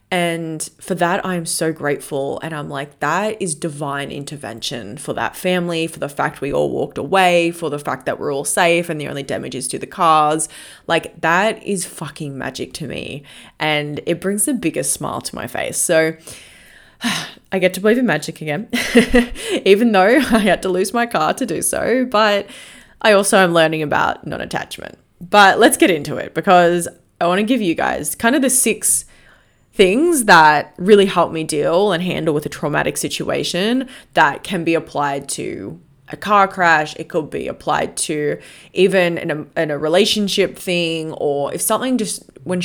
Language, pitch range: English, 155-200 Hz